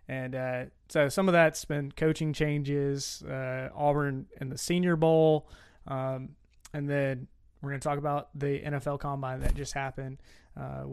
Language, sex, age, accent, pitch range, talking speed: English, male, 20-39, American, 135-160 Hz, 165 wpm